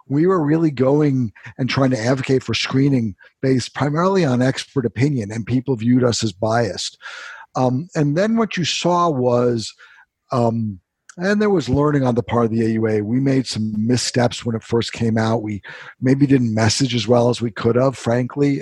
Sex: male